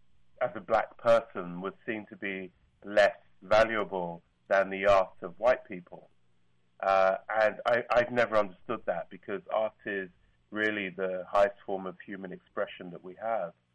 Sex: male